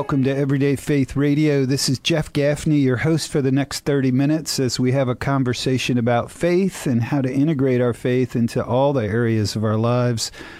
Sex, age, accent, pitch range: male, 40-59, American, 115-145 Hz